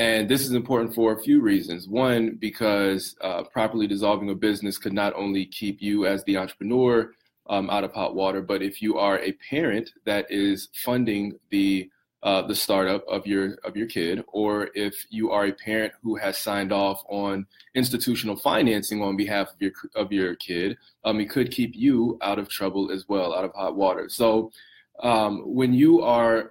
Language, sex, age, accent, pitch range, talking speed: English, male, 20-39, American, 100-115 Hz, 190 wpm